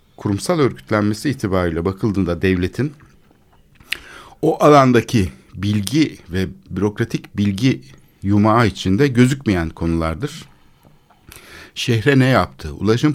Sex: male